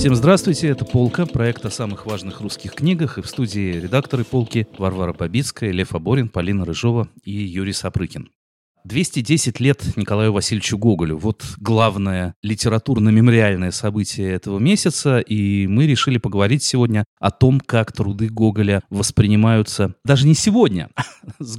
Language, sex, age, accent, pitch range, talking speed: Russian, male, 30-49, native, 100-125 Hz, 140 wpm